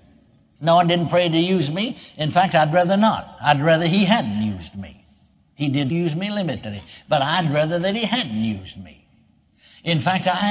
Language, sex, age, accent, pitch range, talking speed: English, male, 60-79, American, 150-220 Hz, 195 wpm